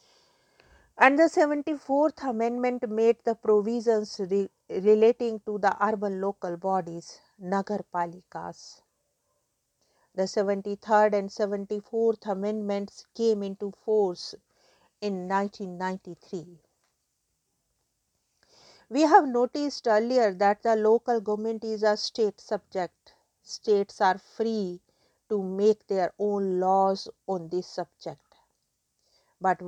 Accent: Indian